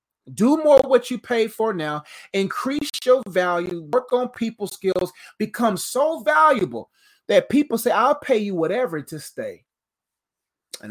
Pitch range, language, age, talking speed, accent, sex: 175-240 Hz, English, 30-49, 150 wpm, American, male